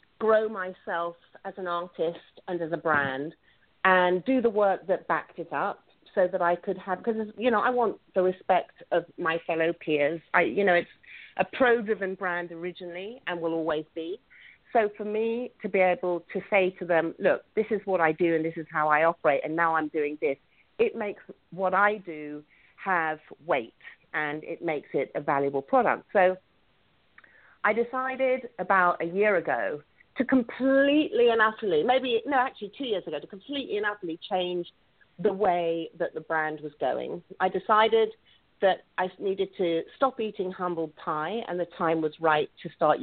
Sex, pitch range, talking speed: female, 165-210 Hz, 185 wpm